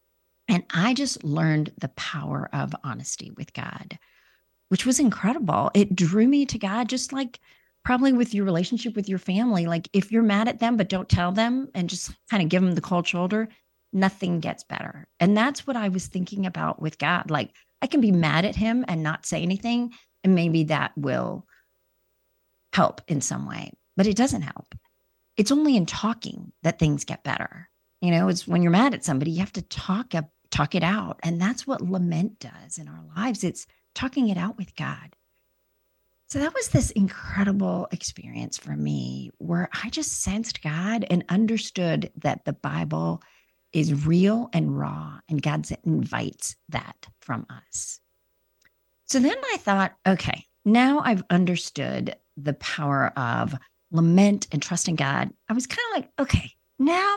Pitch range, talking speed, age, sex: 165-225 Hz, 175 wpm, 40-59, female